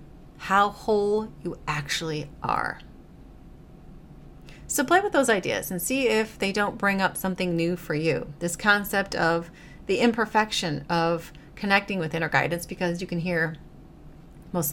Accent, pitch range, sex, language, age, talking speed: American, 150-200 Hz, female, English, 30-49, 145 wpm